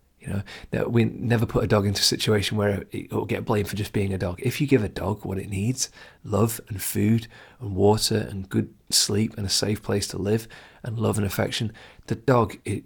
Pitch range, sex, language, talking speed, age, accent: 100-115 Hz, male, English, 235 wpm, 30-49, British